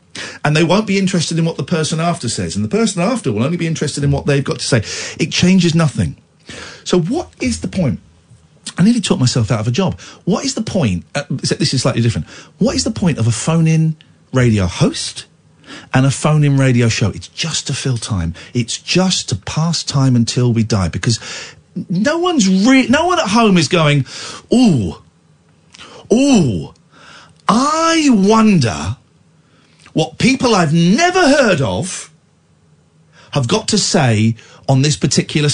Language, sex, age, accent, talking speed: English, male, 50-69, British, 170 wpm